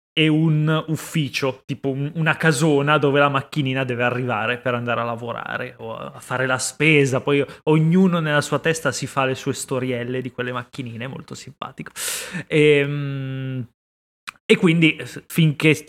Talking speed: 145 wpm